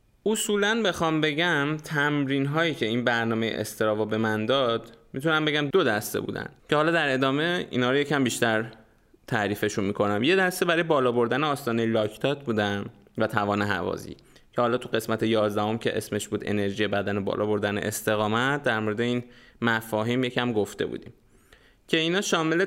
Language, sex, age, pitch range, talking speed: Persian, male, 20-39, 110-140 Hz, 165 wpm